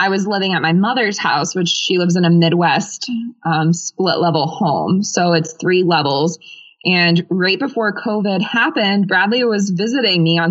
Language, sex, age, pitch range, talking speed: English, female, 20-39, 165-200 Hz, 175 wpm